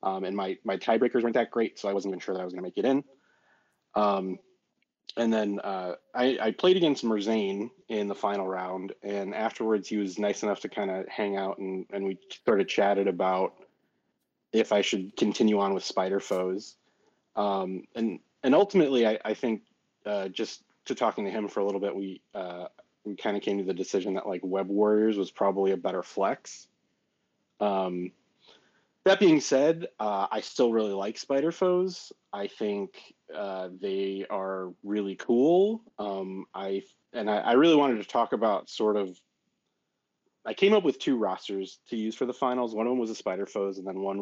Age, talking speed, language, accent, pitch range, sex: 30-49, 195 wpm, English, American, 95-110 Hz, male